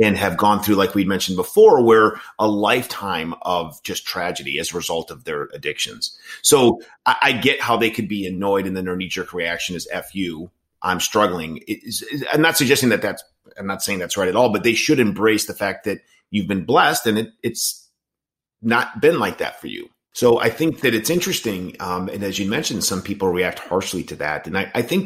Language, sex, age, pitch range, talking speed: English, male, 30-49, 110-155 Hz, 225 wpm